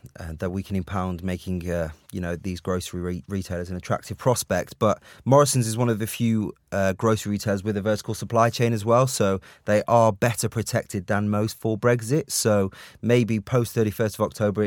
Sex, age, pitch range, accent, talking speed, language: male, 30-49, 95-115 Hz, British, 195 wpm, English